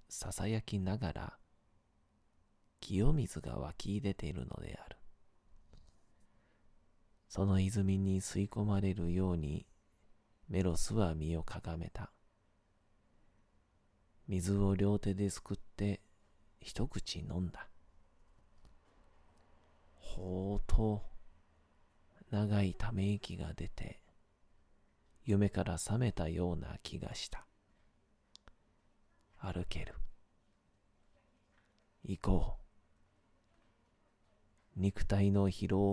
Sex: male